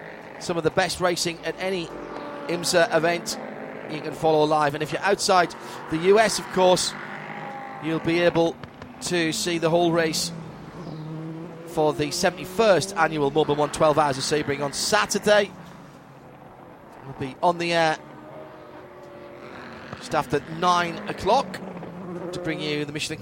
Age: 30-49